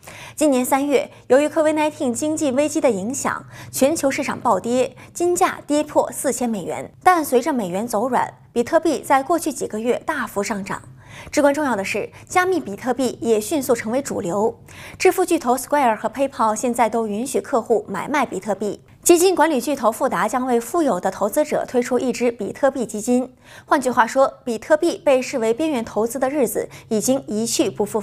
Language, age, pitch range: Chinese, 20-39, 225-300 Hz